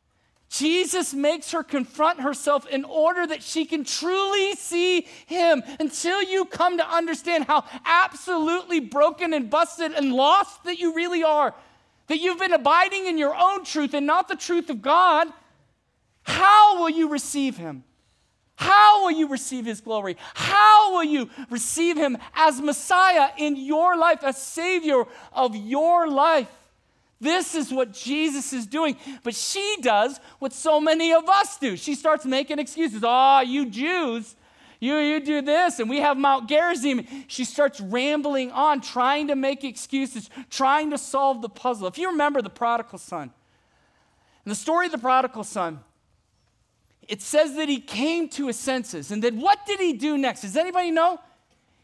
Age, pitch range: 40-59, 260-335 Hz